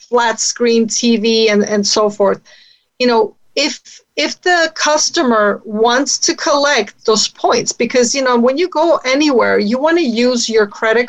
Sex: female